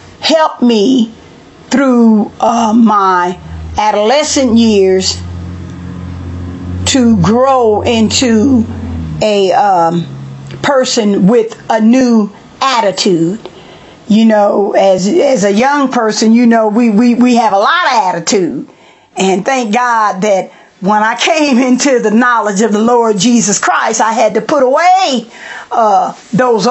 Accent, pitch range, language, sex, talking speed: American, 190-245 Hz, English, female, 125 wpm